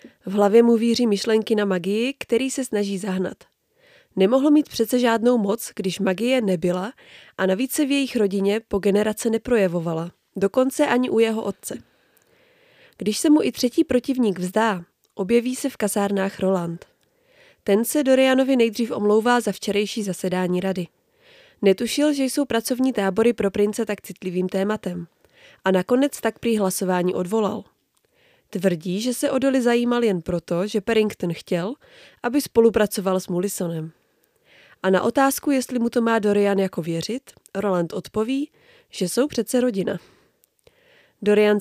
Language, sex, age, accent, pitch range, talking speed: Czech, female, 20-39, native, 195-250 Hz, 145 wpm